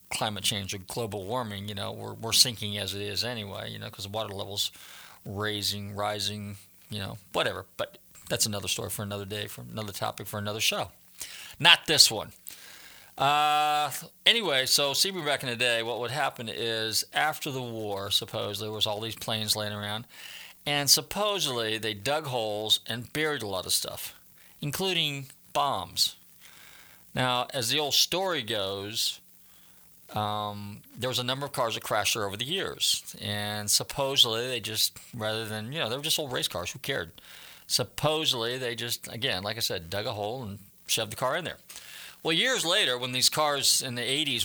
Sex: male